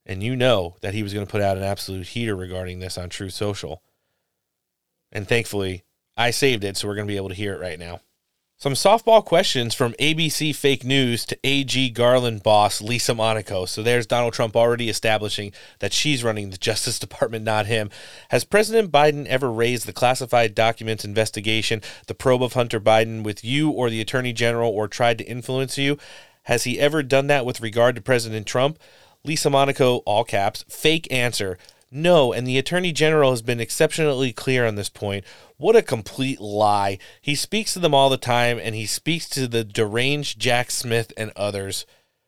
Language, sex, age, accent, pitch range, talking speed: English, male, 30-49, American, 110-135 Hz, 190 wpm